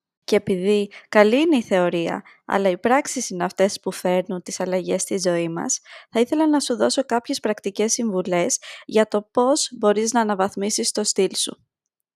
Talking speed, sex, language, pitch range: 175 wpm, female, Greek, 190-250 Hz